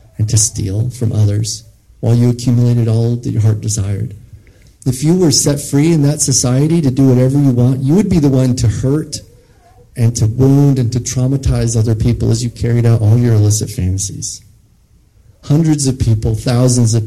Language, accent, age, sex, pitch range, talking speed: English, American, 40-59, male, 105-125 Hz, 190 wpm